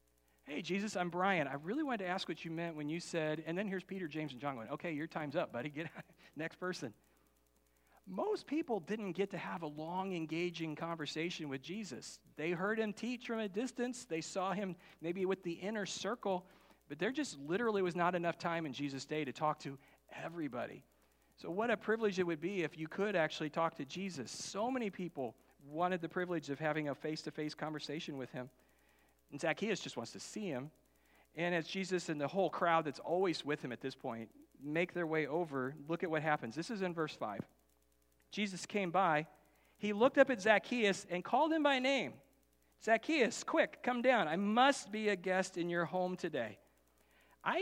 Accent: American